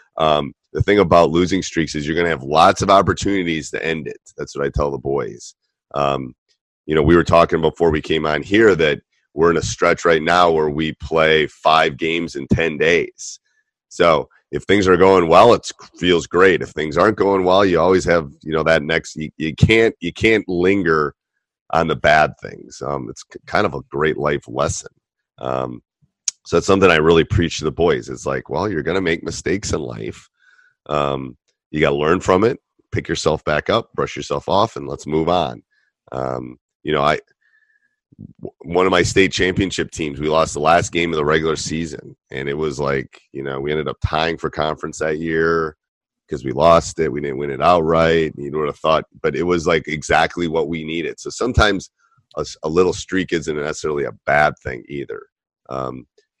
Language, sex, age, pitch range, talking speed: English, male, 30-49, 75-95 Hz, 205 wpm